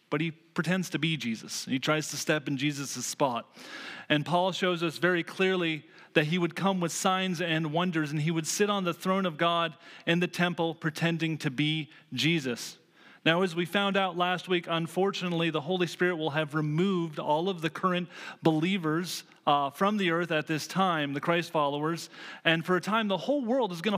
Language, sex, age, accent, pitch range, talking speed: English, male, 30-49, American, 160-190 Hz, 205 wpm